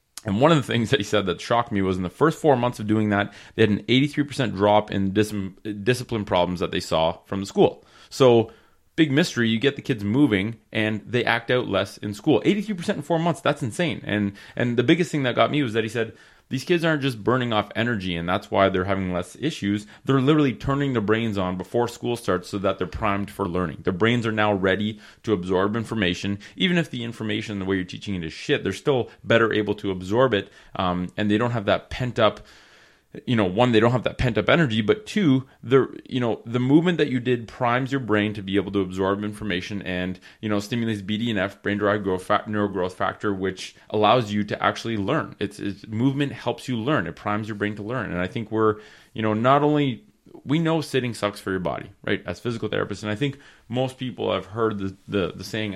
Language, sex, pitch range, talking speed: English, male, 100-125 Hz, 235 wpm